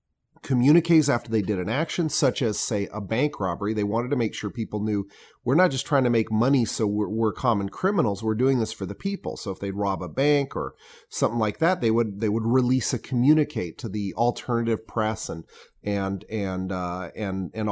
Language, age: English, 30-49